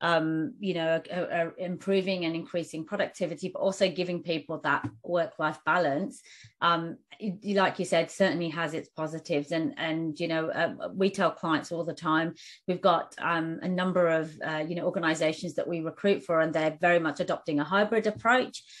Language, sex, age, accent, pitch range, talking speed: English, female, 30-49, British, 165-195 Hz, 180 wpm